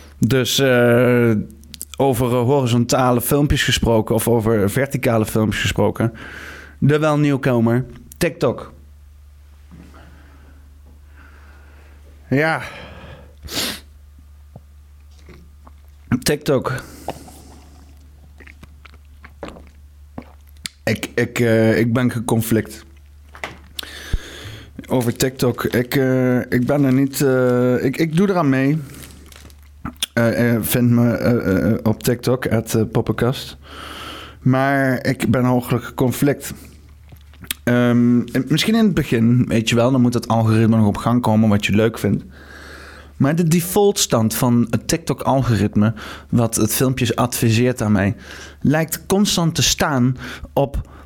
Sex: male